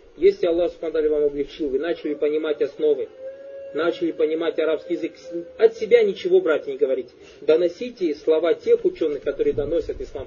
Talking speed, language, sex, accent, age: 145 wpm, Russian, male, native, 20-39